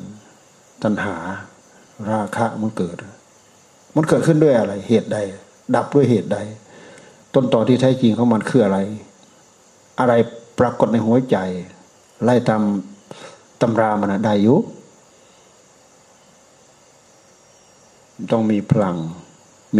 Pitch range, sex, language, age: 105-135 Hz, male, Thai, 60-79